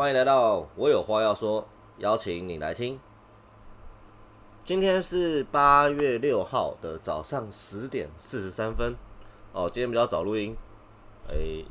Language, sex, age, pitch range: Chinese, male, 30-49, 105-135 Hz